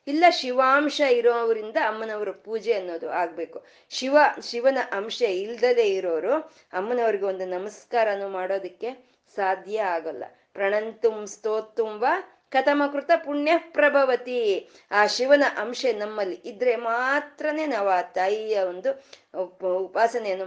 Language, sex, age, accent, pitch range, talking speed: Kannada, female, 20-39, native, 195-280 Hz, 95 wpm